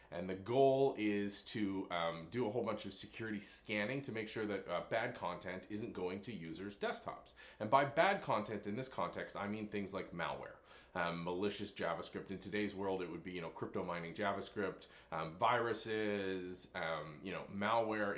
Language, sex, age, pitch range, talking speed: English, male, 30-49, 95-125 Hz, 190 wpm